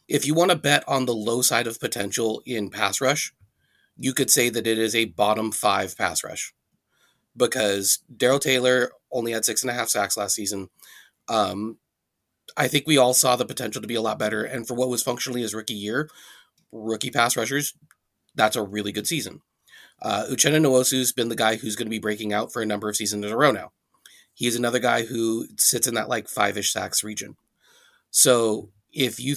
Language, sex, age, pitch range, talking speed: English, male, 30-49, 105-130 Hz, 215 wpm